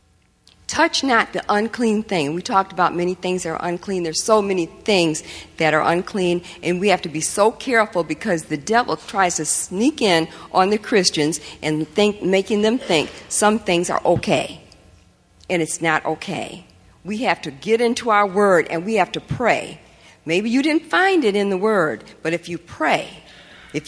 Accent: American